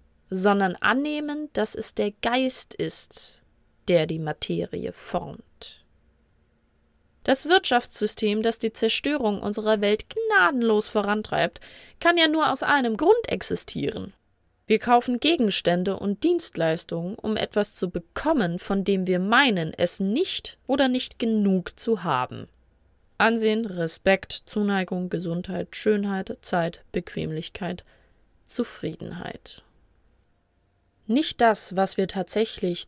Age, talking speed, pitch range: 20-39, 110 wpm, 180-240 Hz